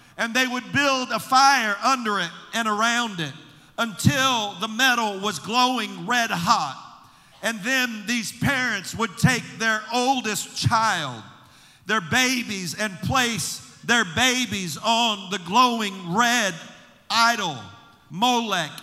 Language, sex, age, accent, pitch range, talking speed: English, male, 50-69, American, 180-245 Hz, 125 wpm